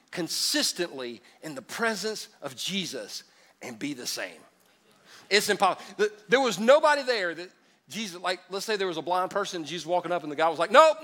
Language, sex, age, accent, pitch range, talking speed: English, male, 40-59, American, 155-205 Hz, 190 wpm